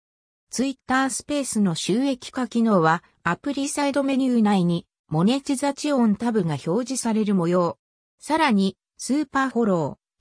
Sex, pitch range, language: female, 180-265 Hz, Japanese